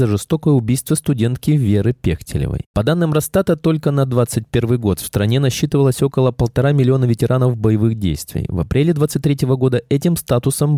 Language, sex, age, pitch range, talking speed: Russian, male, 20-39, 110-150 Hz, 155 wpm